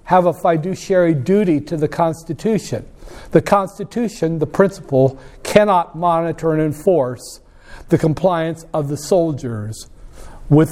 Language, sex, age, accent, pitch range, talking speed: English, male, 60-79, American, 145-185 Hz, 120 wpm